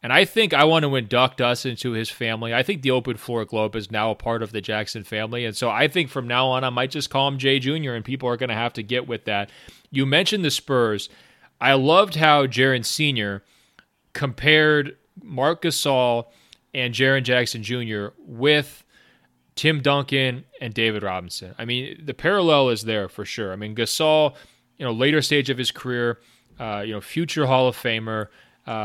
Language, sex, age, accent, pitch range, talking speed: English, male, 30-49, American, 115-145 Hz, 200 wpm